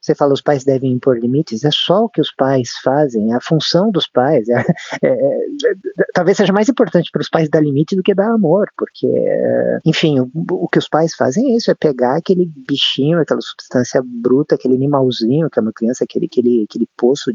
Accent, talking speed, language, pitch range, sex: Brazilian, 220 wpm, Portuguese, 115-180 Hz, male